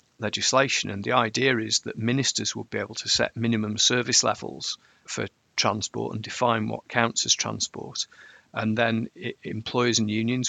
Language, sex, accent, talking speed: English, male, British, 165 wpm